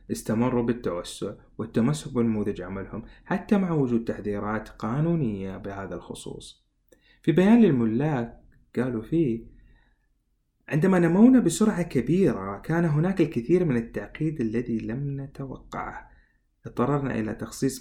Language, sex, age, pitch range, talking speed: Arabic, male, 30-49, 110-155 Hz, 110 wpm